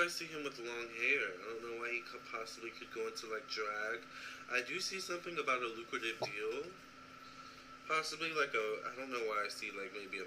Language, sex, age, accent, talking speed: English, male, 20-39, American, 215 wpm